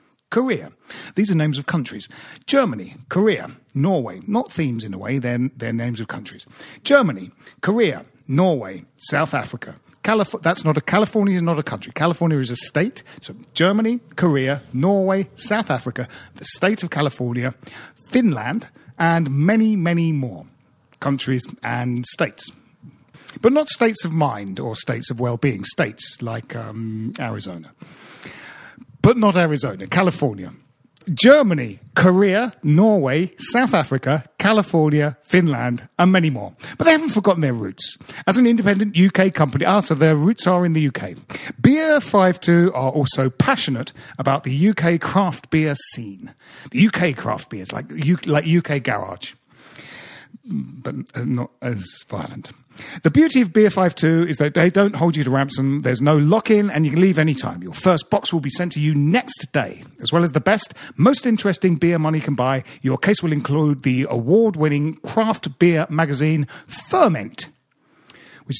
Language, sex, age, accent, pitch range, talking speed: English, male, 40-59, British, 135-190 Hz, 155 wpm